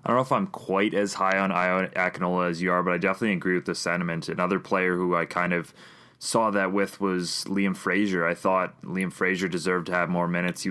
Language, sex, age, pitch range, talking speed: English, male, 20-39, 90-100 Hz, 235 wpm